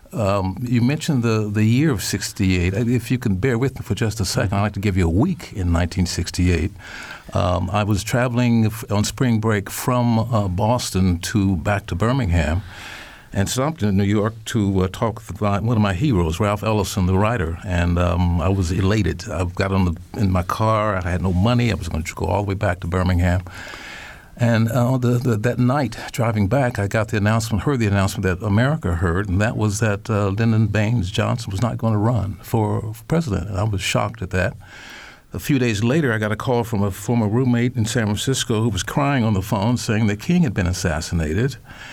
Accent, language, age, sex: American, English, 60-79, male